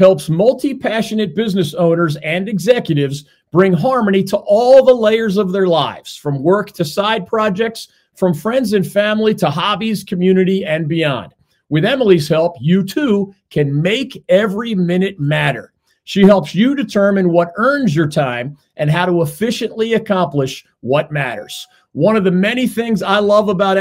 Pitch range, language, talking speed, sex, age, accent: 160-210 Hz, English, 155 wpm, male, 40-59, American